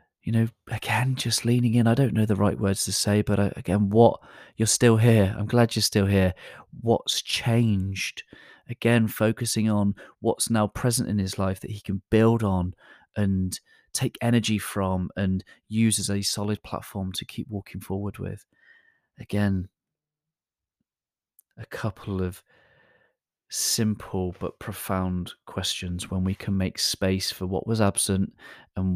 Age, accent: 30-49, British